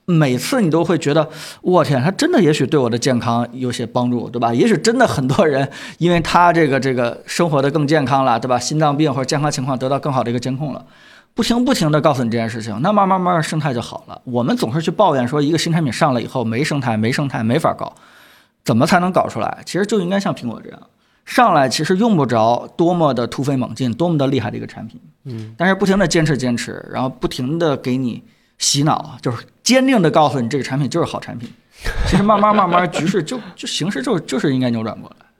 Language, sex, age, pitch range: Chinese, male, 20-39, 125-170 Hz